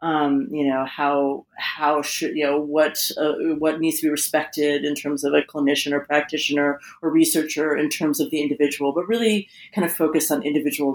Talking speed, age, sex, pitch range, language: 195 wpm, 30-49, female, 145-180 Hz, English